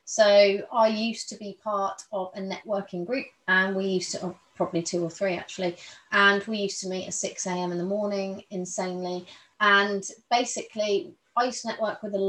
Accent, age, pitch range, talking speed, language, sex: British, 30-49, 185-230 Hz, 185 wpm, English, female